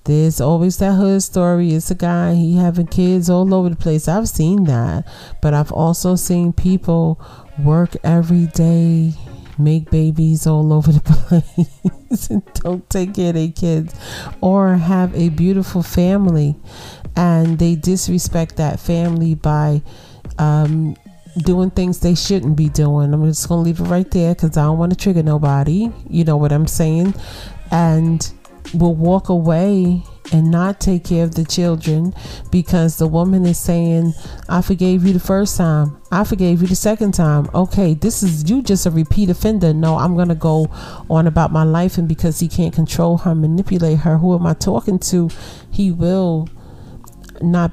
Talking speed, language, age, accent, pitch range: 170 wpm, English, 40-59, American, 155-180 Hz